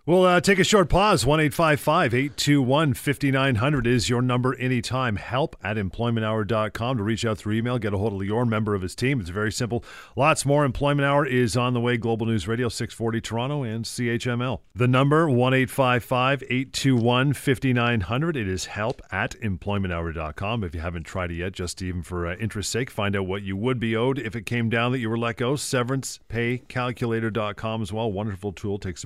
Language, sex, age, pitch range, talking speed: English, male, 40-59, 105-130 Hz, 180 wpm